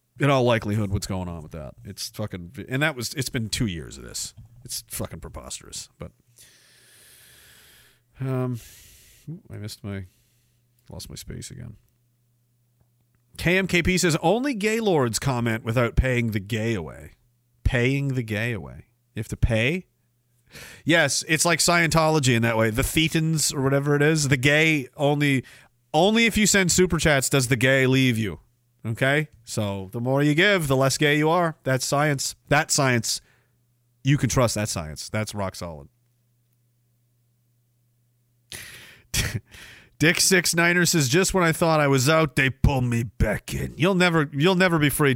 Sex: male